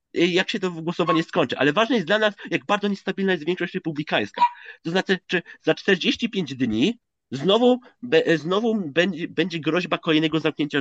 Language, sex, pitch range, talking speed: Polish, male, 155-200 Hz, 160 wpm